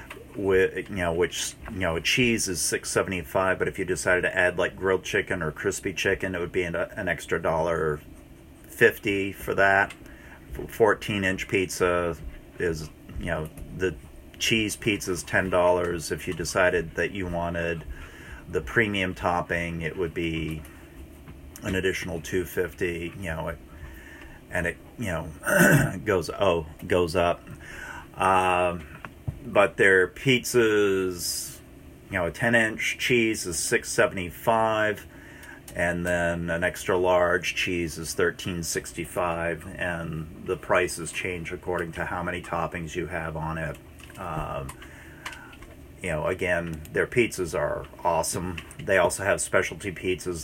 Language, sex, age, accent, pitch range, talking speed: English, male, 40-59, American, 80-90 Hz, 145 wpm